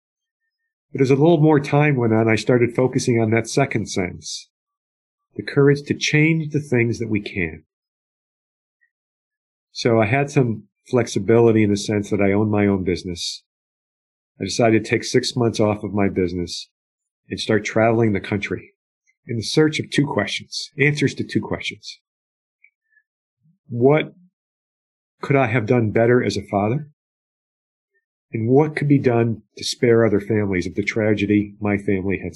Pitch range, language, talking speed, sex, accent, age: 105-140 Hz, English, 160 wpm, male, American, 50-69